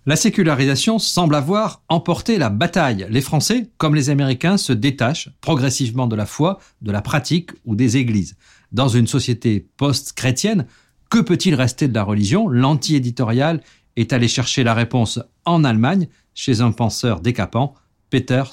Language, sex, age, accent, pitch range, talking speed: French, male, 50-69, French, 115-155 Hz, 150 wpm